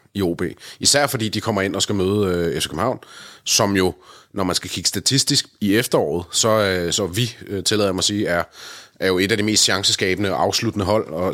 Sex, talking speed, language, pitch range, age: male, 235 wpm, Danish, 95-115 Hz, 30-49